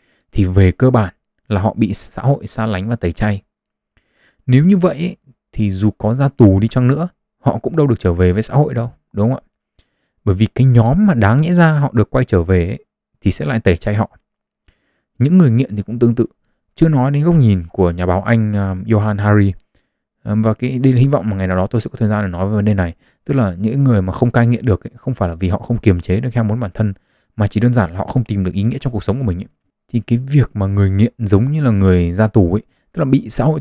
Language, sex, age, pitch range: Vietnamese, male, 20-39, 95-125 Hz